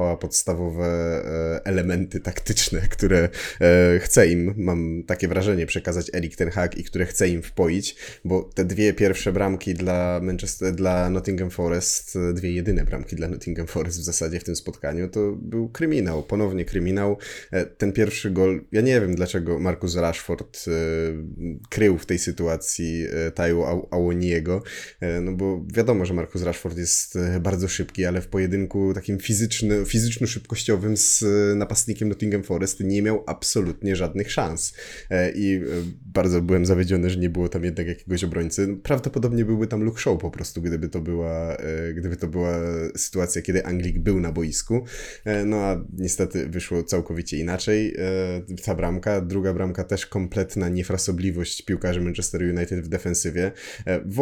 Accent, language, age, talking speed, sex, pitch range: native, Polish, 20-39, 145 wpm, male, 85-95 Hz